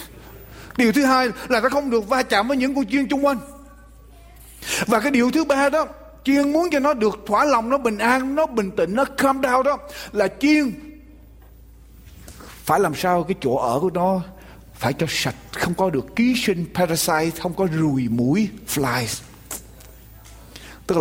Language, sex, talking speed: Vietnamese, male, 180 wpm